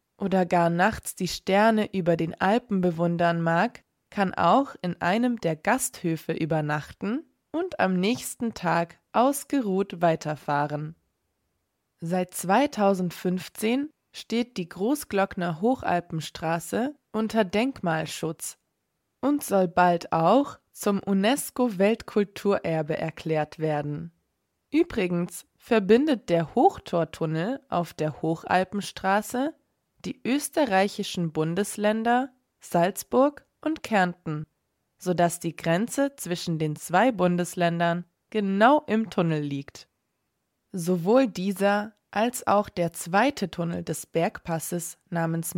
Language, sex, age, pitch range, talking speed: English, female, 20-39, 165-220 Hz, 95 wpm